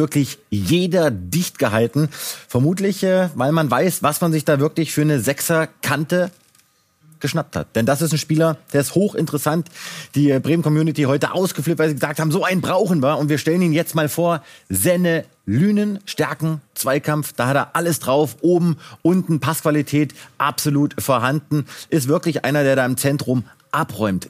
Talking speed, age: 165 wpm, 30-49